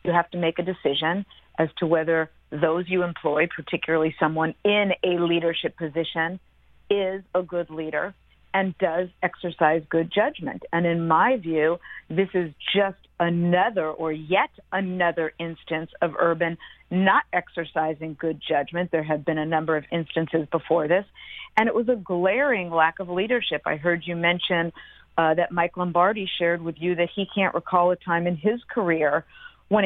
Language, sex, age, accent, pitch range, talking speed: English, female, 50-69, American, 165-200 Hz, 165 wpm